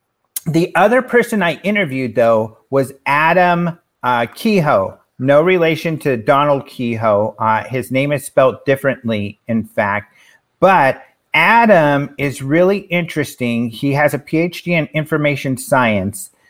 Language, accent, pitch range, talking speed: English, American, 120-150 Hz, 125 wpm